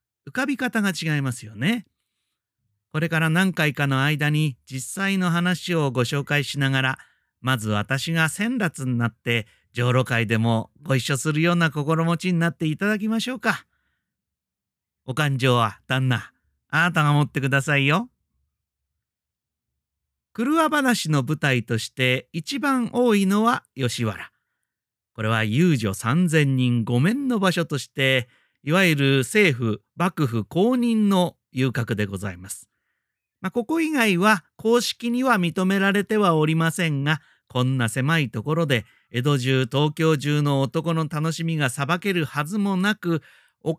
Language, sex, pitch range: Japanese, male, 120-180 Hz